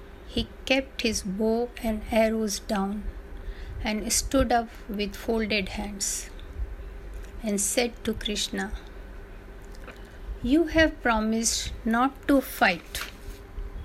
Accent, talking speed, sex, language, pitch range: native, 100 wpm, female, Hindi, 200-245 Hz